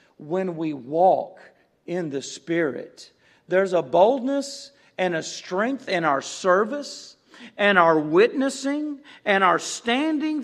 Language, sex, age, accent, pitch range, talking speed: English, male, 50-69, American, 150-210 Hz, 120 wpm